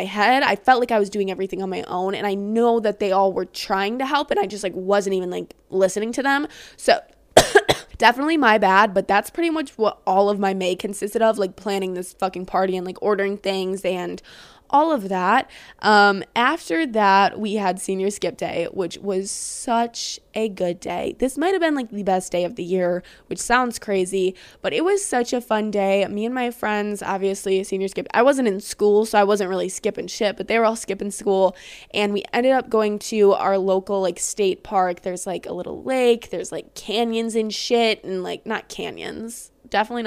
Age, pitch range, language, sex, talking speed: 20-39, 195-235 Hz, English, female, 215 wpm